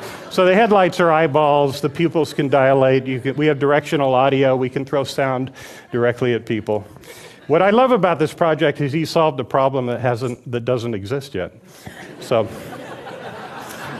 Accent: American